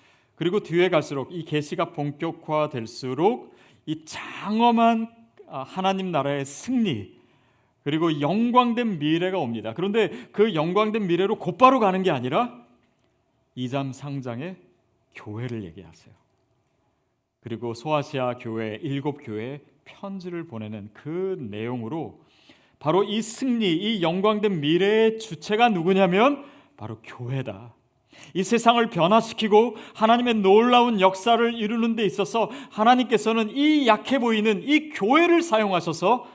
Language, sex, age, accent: Korean, male, 40-59, native